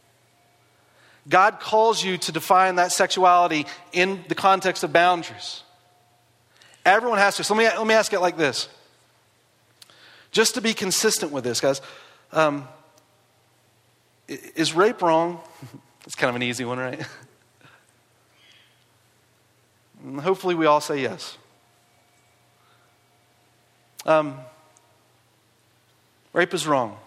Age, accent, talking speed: 30-49, American, 115 wpm